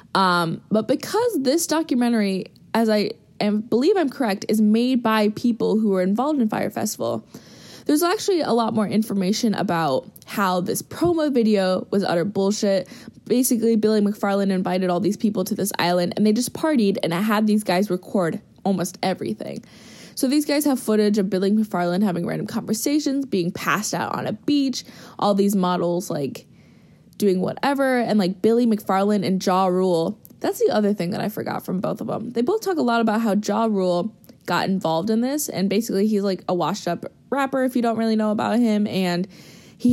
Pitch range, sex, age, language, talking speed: 185-230 Hz, female, 20-39, English, 190 wpm